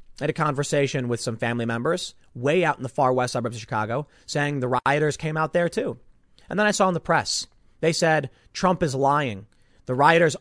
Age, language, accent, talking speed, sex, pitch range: 30-49, English, American, 220 wpm, male, 140-240 Hz